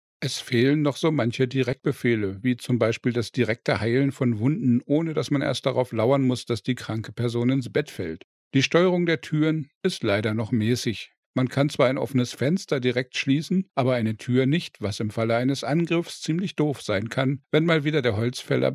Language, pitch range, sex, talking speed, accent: German, 115-140 Hz, male, 200 wpm, German